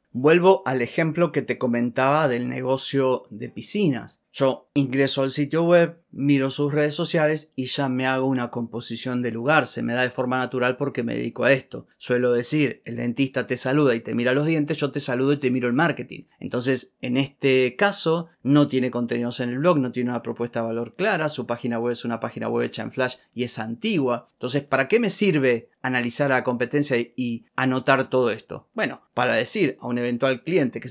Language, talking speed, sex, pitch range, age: Spanish, 210 wpm, male, 120-150 Hz, 30-49